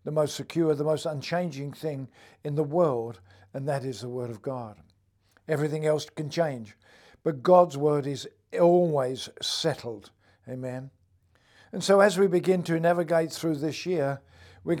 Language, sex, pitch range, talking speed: English, male, 130-165 Hz, 160 wpm